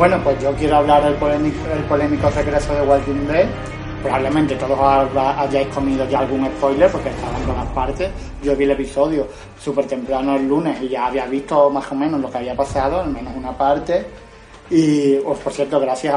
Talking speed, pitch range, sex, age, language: 205 wpm, 135-150 Hz, male, 20-39, Spanish